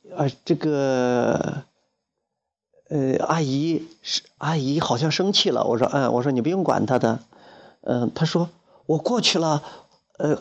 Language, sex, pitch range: Chinese, male, 140-200 Hz